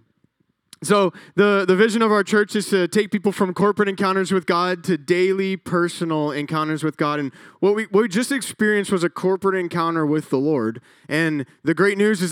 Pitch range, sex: 165-195 Hz, male